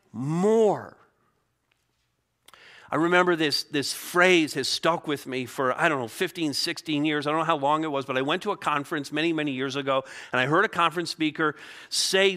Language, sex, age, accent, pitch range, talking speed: English, male, 50-69, American, 155-200 Hz, 200 wpm